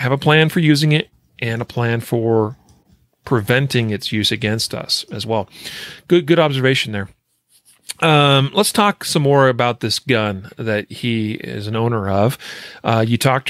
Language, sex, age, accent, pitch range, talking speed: English, male, 40-59, American, 115-140 Hz, 170 wpm